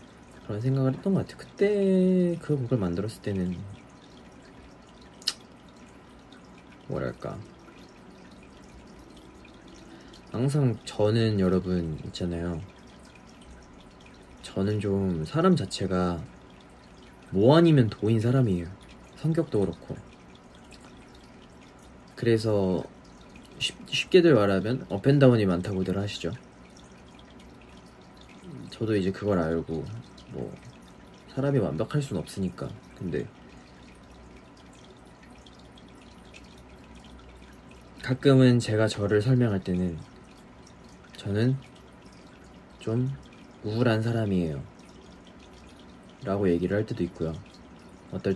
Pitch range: 85-120 Hz